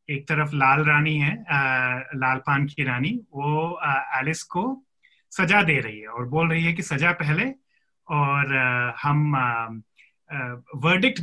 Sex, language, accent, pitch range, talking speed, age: male, Hindi, native, 130-175 Hz, 160 wpm, 30-49